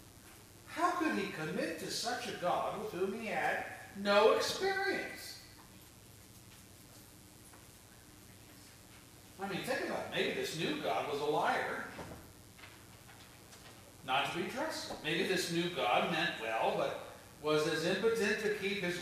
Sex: male